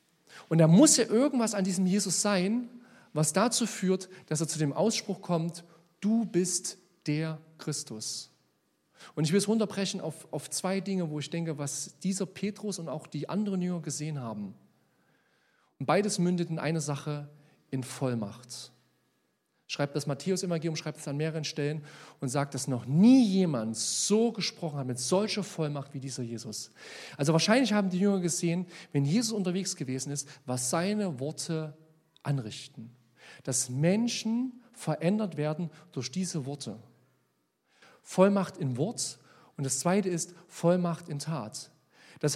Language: German